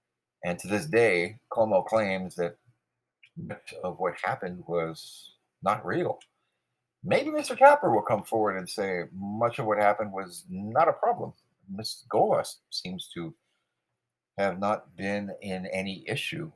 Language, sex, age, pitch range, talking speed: English, male, 50-69, 80-105 Hz, 145 wpm